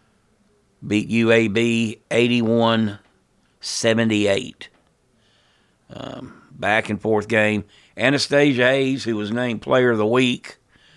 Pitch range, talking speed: 100-125 Hz, 90 wpm